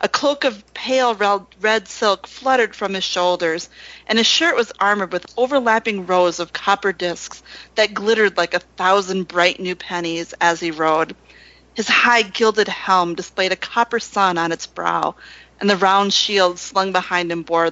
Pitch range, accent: 165-205 Hz, American